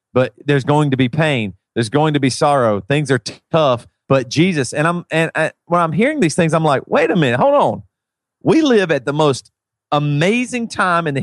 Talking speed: 225 wpm